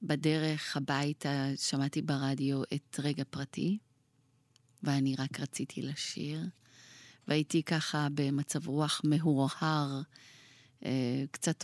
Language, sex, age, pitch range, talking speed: Hebrew, female, 30-49, 135-165 Hz, 95 wpm